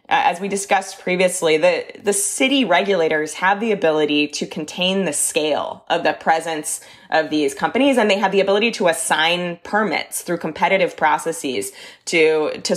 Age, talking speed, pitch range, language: 20-39, 160 wpm, 160-205 Hz, English